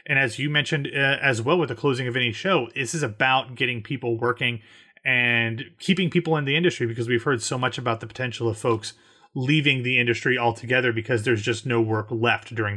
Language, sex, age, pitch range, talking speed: English, male, 30-49, 120-150 Hz, 215 wpm